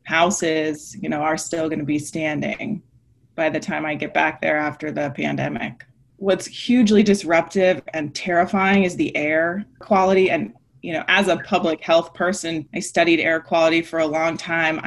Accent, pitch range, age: American, 155-175 Hz, 20-39